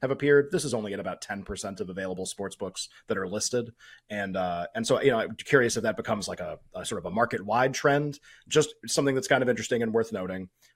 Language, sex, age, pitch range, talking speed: English, male, 30-49, 105-130 Hz, 245 wpm